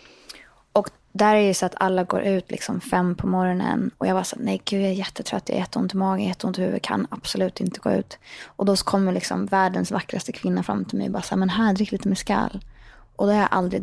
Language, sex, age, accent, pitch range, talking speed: English, female, 20-39, Swedish, 180-210 Hz, 260 wpm